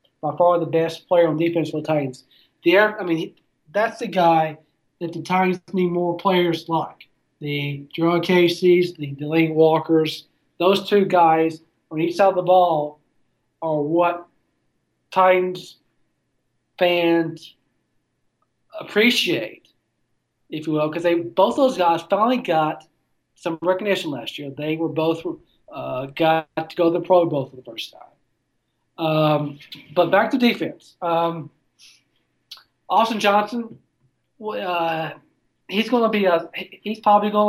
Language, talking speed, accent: English, 140 wpm, American